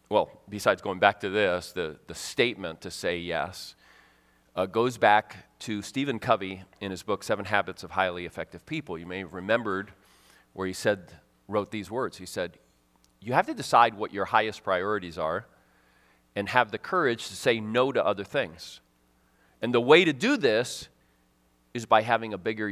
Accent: American